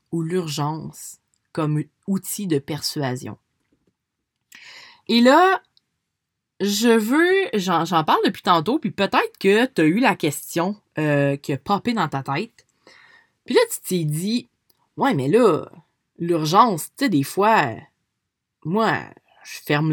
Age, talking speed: 20-39, 140 wpm